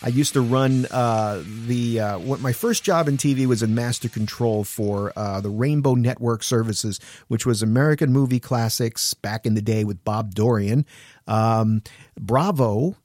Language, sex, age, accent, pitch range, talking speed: English, male, 50-69, American, 110-145 Hz, 170 wpm